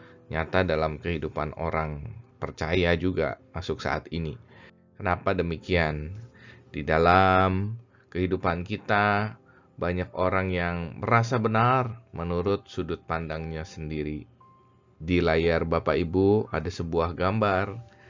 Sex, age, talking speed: male, 20-39, 105 wpm